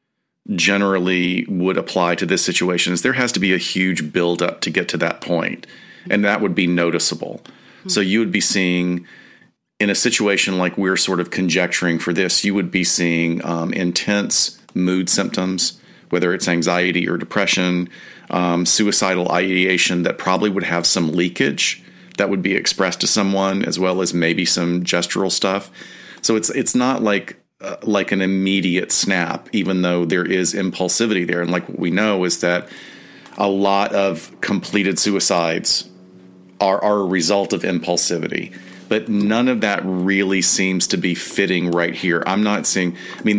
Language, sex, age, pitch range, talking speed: English, male, 40-59, 90-100 Hz, 170 wpm